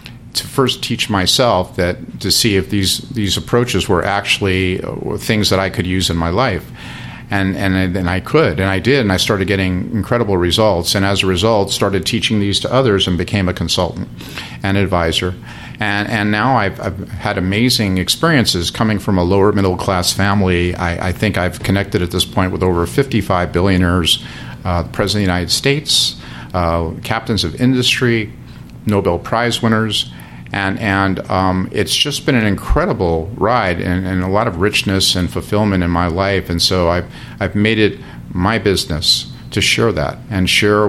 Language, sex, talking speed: English, male, 180 wpm